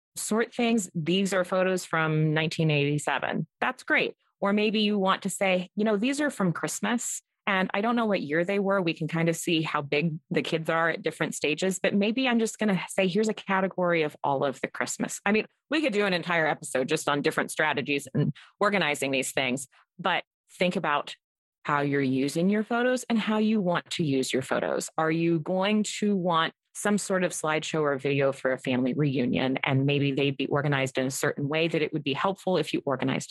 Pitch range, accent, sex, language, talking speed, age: 150-200 Hz, American, female, English, 220 wpm, 30-49